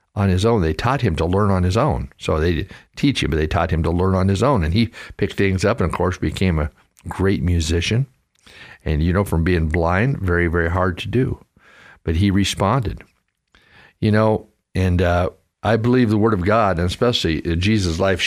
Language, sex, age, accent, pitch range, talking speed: English, male, 60-79, American, 90-120 Hz, 210 wpm